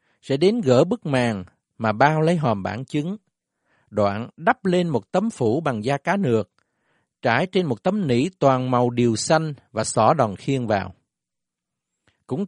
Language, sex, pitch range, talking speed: Vietnamese, male, 115-160 Hz, 175 wpm